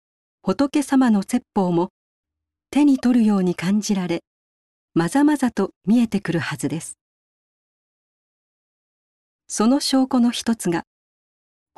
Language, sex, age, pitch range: Japanese, female, 50-69, 180-235 Hz